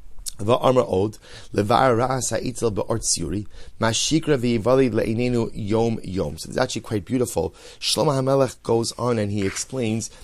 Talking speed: 70 wpm